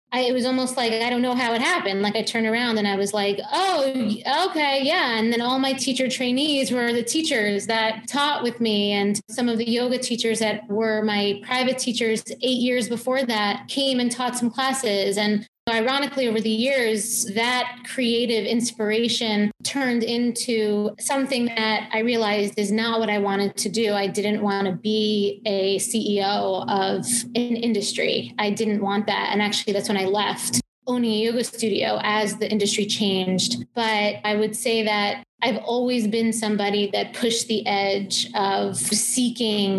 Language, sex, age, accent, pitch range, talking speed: English, female, 20-39, American, 210-240 Hz, 180 wpm